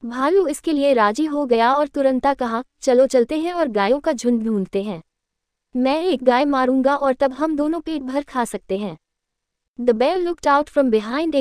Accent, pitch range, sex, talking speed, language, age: native, 235-300 Hz, female, 195 wpm, Hindi, 20-39